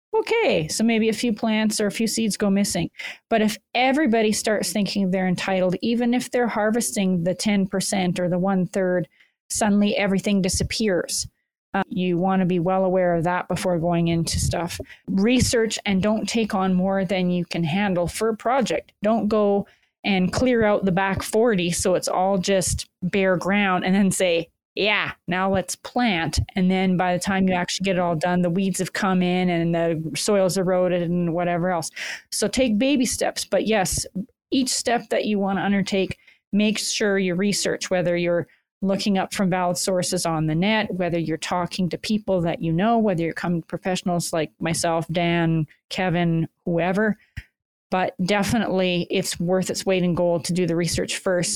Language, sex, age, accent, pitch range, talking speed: English, female, 30-49, American, 175-205 Hz, 185 wpm